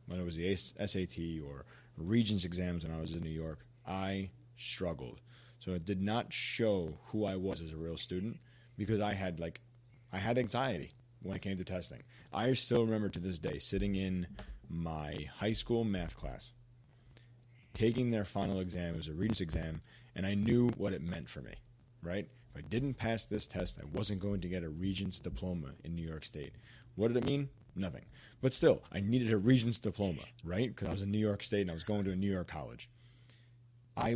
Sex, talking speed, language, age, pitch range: male, 210 wpm, English, 30-49, 90-120 Hz